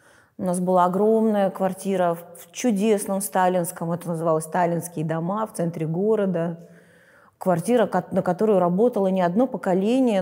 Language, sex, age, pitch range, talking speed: Russian, female, 30-49, 175-215 Hz, 130 wpm